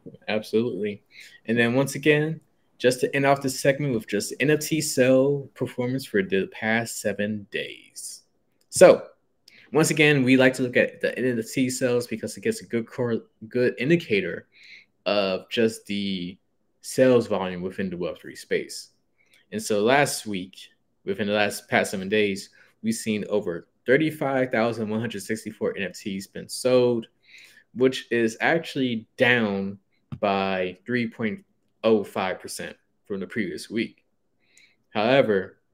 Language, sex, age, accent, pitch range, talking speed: English, male, 20-39, American, 105-130 Hz, 140 wpm